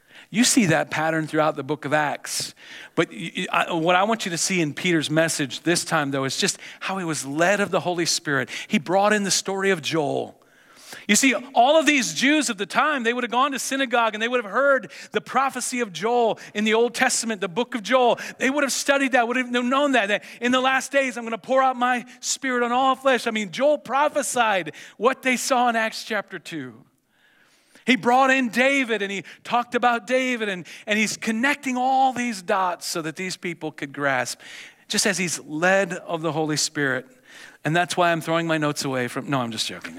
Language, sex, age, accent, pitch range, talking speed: English, male, 40-59, American, 160-245 Hz, 225 wpm